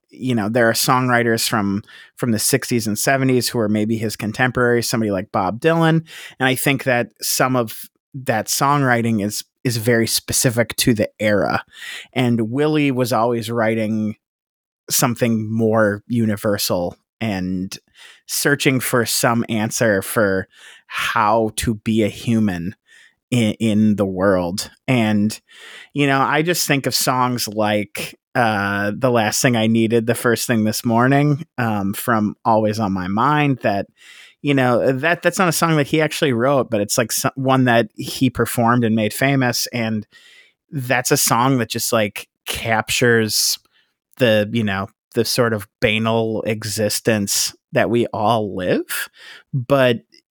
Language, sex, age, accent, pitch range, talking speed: English, male, 30-49, American, 110-130 Hz, 155 wpm